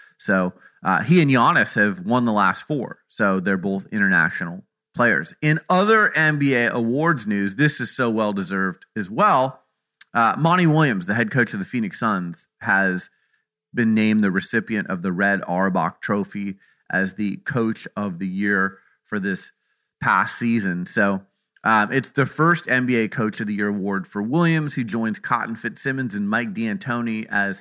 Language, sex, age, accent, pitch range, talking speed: English, male, 30-49, American, 100-135 Hz, 165 wpm